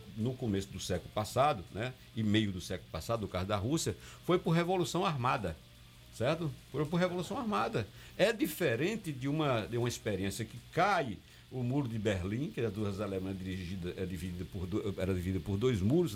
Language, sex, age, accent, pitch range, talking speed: Portuguese, male, 60-79, Brazilian, 100-150 Hz, 195 wpm